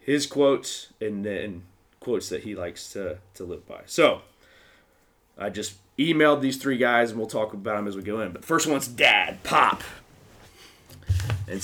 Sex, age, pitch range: male, 20-39, 95-130 Hz